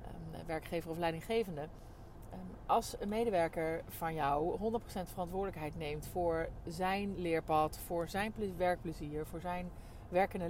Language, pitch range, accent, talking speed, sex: Dutch, 145-190 Hz, Dutch, 115 wpm, female